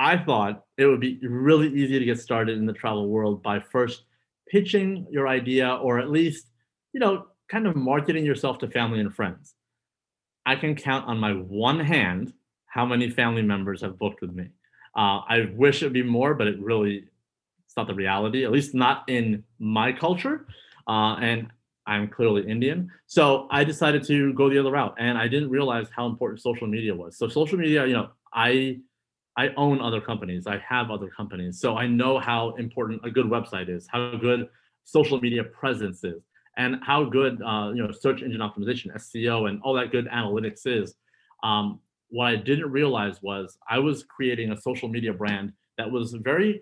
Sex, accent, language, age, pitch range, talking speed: male, American, English, 30-49, 110-140 Hz, 190 wpm